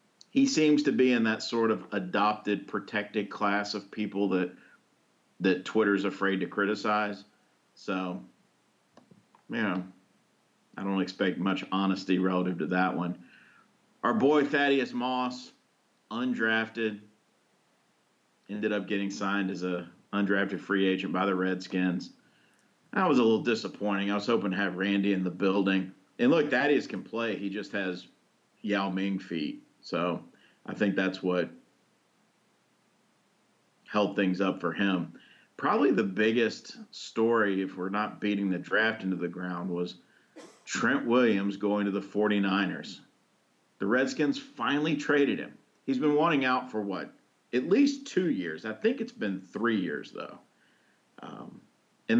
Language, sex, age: English, male, 50-69